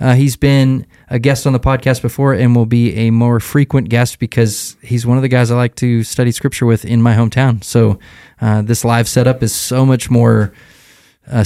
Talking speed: 215 wpm